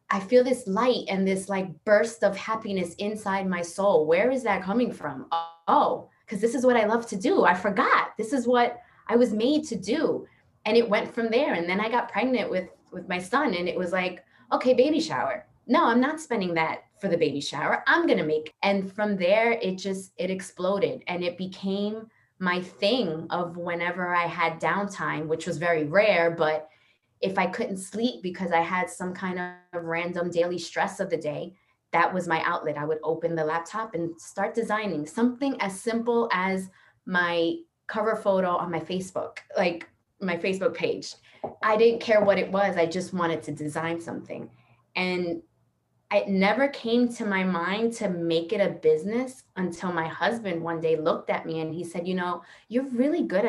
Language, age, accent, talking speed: English, 20-39, American, 195 wpm